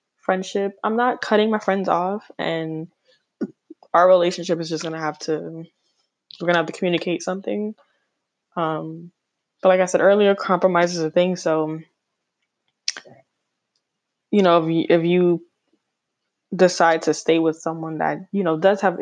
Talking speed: 150 wpm